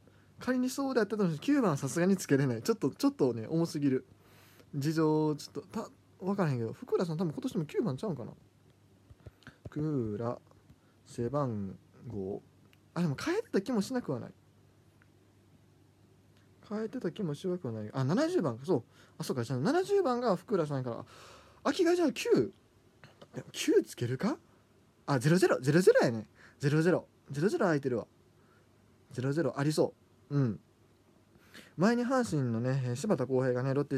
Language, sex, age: Japanese, male, 20-39